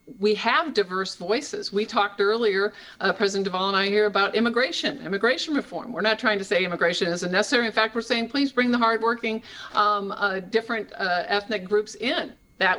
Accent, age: American, 50-69